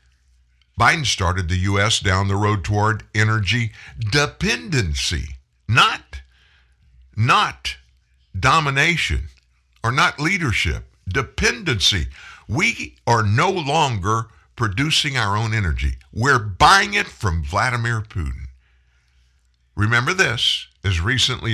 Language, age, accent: English, 60-79, American